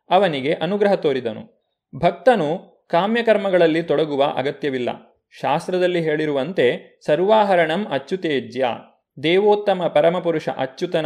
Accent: native